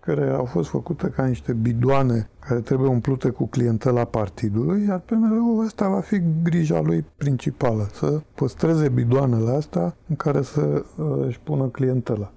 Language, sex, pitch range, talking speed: Romanian, male, 120-165 Hz, 150 wpm